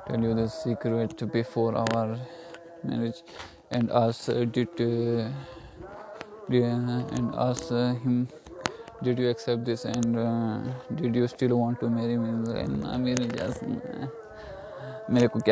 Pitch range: 115-140 Hz